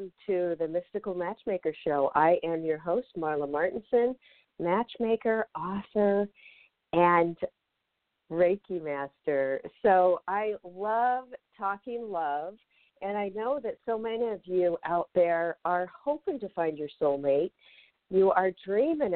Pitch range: 170-225 Hz